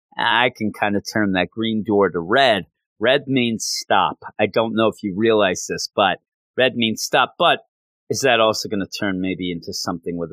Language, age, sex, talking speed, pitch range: English, 40-59, male, 205 wpm, 105-160 Hz